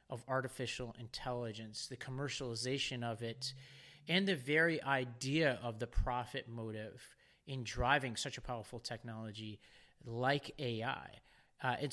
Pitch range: 120-140 Hz